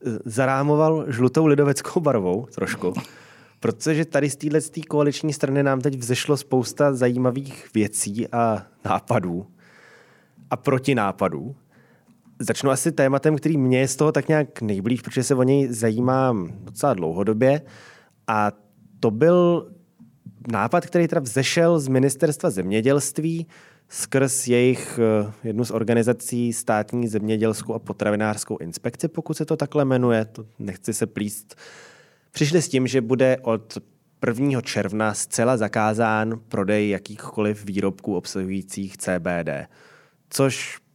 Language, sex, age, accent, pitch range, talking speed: Czech, male, 20-39, native, 110-135 Hz, 125 wpm